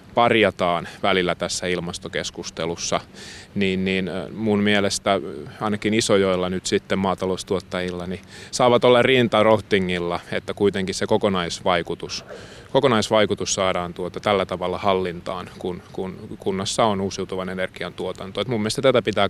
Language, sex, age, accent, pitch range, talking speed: Finnish, male, 20-39, native, 90-105 Hz, 120 wpm